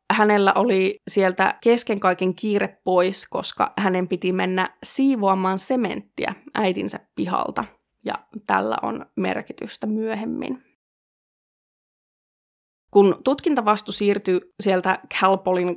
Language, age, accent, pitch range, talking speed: Finnish, 20-39, native, 185-235 Hz, 95 wpm